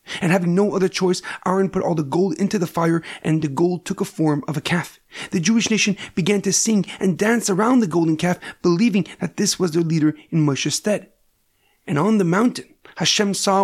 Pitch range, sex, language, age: 170-195 Hz, male, English, 30-49